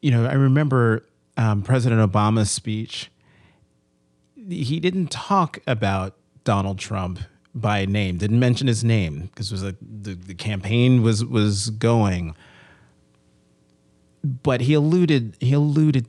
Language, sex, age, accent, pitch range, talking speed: English, male, 30-49, American, 95-120 Hz, 130 wpm